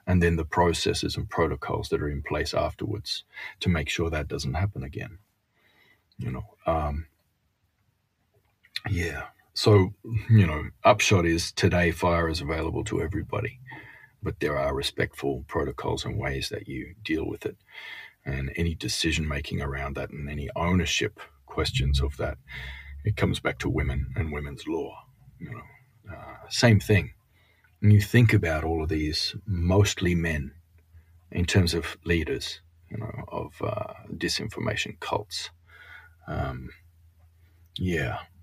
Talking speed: 140 wpm